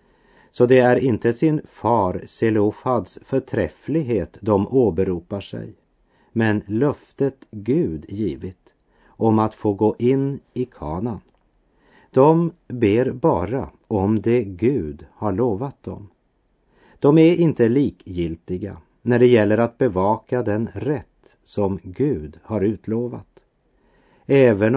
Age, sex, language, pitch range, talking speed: 40-59, male, French, 95-125 Hz, 115 wpm